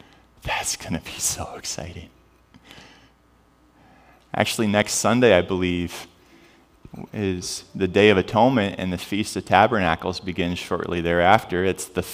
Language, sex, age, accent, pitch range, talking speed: English, male, 30-49, American, 85-115 Hz, 130 wpm